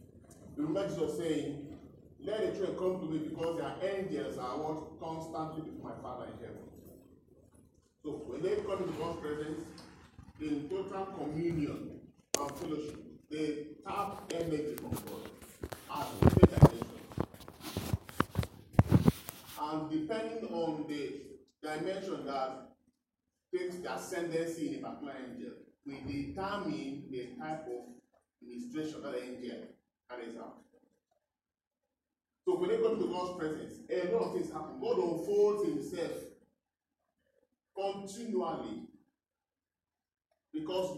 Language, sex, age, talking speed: English, male, 40-59, 120 wpm